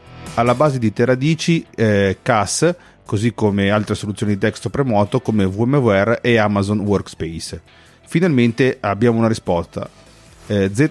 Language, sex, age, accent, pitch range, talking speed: Italian, male, 40-59, native, 100-130 Hz, 125 wpm